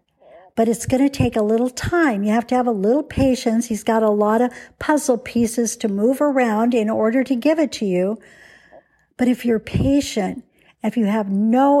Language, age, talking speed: English, 60-79, 205 wpm